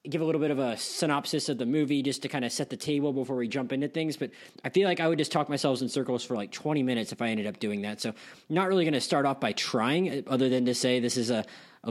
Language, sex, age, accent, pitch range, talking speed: English, male, 20-39, American, 125-155 Hz, 310 wpm